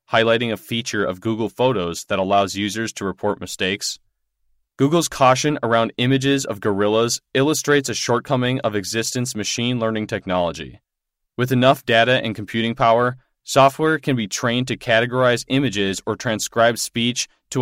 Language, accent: English, American